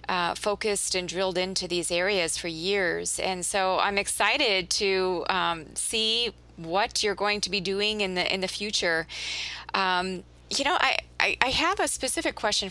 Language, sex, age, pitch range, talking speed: English, female, 20-39, 175-200 Hz, 175 wpm